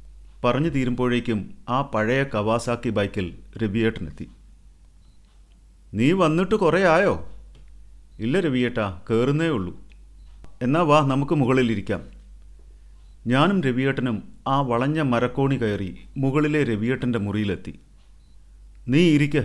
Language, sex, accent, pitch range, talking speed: Malayalam, male, native, 95-140 Hz, 90 wpm